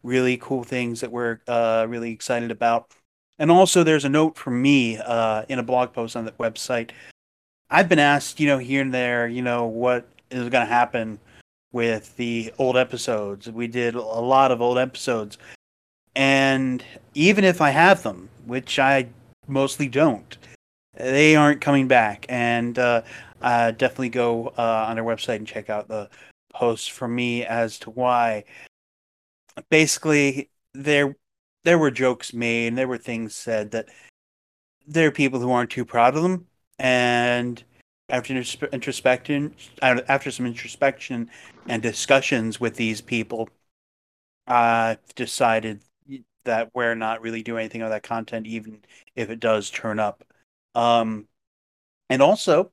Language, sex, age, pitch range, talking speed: English, male, 30-49, 115-135 Hz, 155 wpm